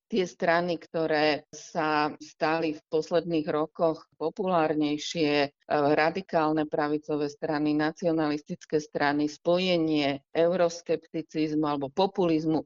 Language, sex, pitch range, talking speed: Slovak, female, 150-165 Hz, 85 wpm